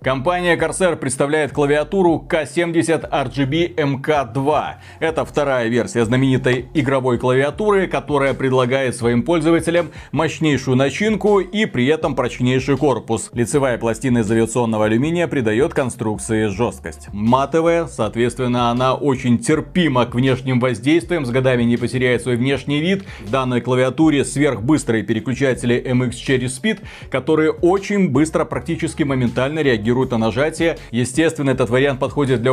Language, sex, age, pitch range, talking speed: Russian, male, 30-49, 120-155 Hz, 120 wpm